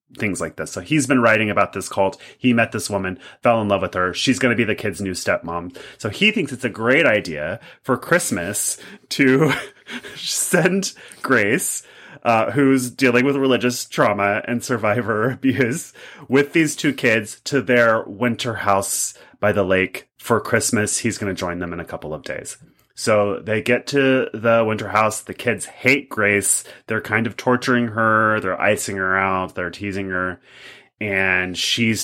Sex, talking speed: male, 180 wpm